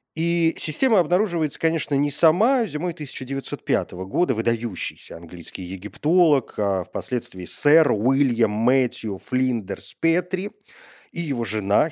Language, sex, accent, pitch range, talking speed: Russian, male, native, 120-180 Hz, 110 wpm